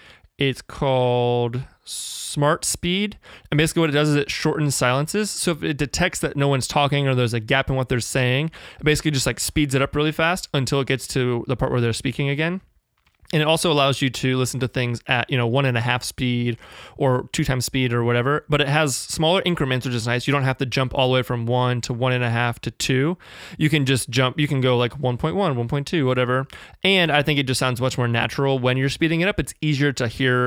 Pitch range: 125-150 Hz